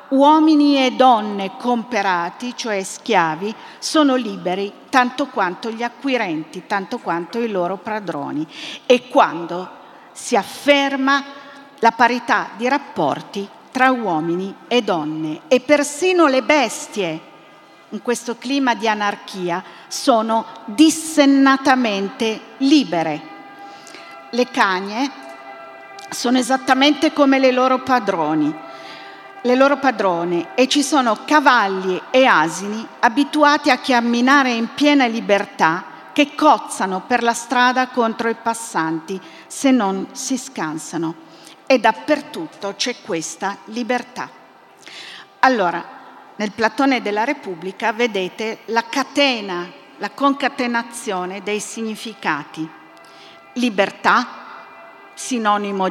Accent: native